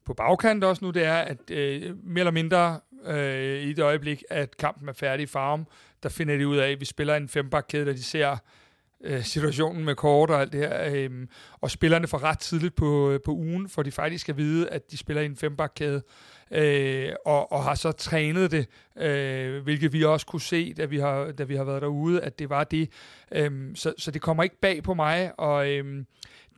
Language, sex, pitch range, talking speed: Danish, male, 145-175 Hz, 220 wpm